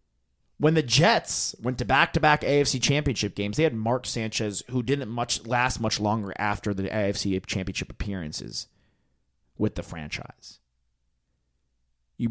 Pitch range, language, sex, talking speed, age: 80-125 Hz, English, male, 135 wpm, 30-49